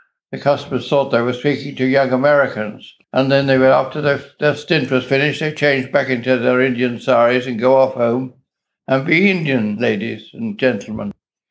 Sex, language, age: male, English, 60-79